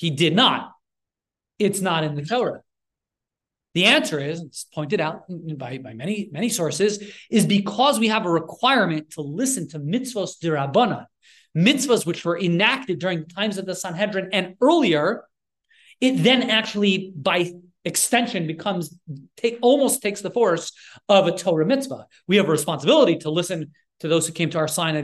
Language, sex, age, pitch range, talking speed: English, male, 30-49, 165-220 Hz, 170 wpm